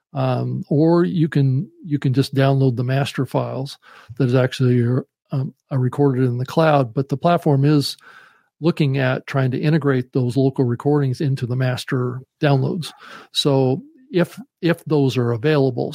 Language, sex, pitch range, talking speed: English, male, 130-150 Hz, 160 wpm